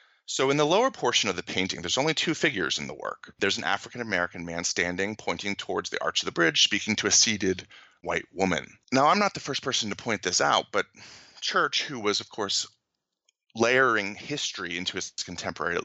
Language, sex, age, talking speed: English, male, 30-49, 205 wpm